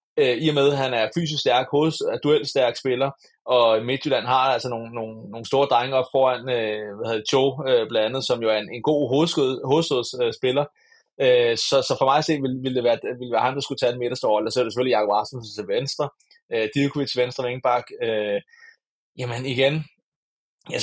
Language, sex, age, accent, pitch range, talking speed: Danish, male, 20-39, native, 125-155 Hz, 190 wpm